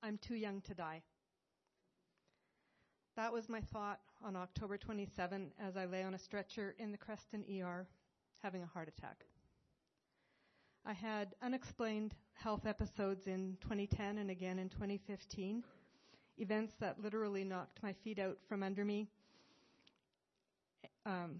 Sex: female